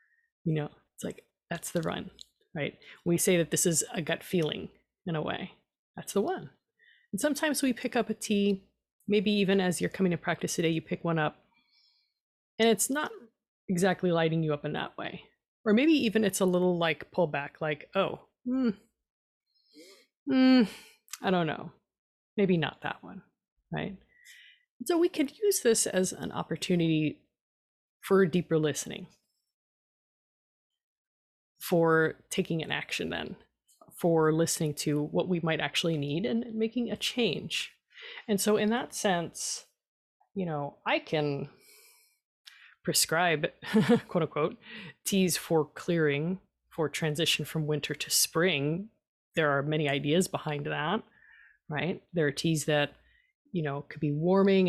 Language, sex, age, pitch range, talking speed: English, female, 30-49, 155-215 Hz, 150 wpm